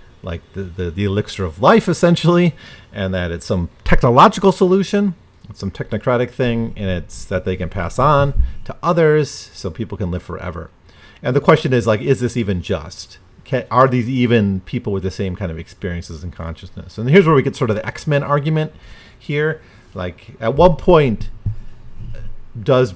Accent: American